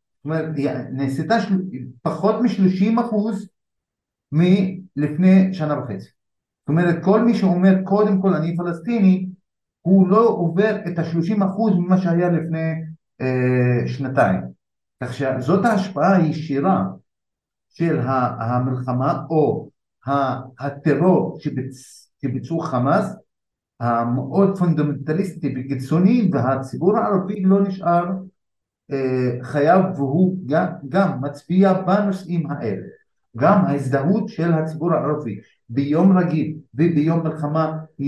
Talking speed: 100 wpm